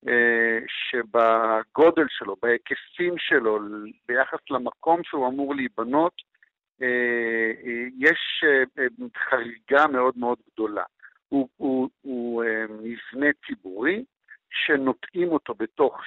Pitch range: 120-165 Hz